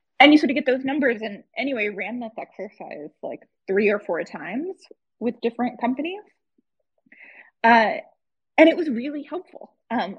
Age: 20-39